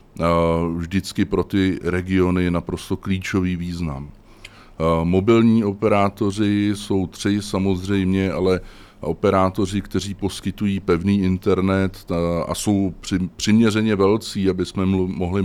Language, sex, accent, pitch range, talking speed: Czech, male, native, 85-100 Hz, 100 wpm